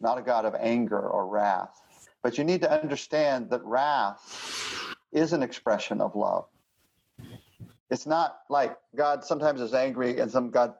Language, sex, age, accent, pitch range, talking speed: English, male, 50-69, American, 120-180 Hz, 160 wpm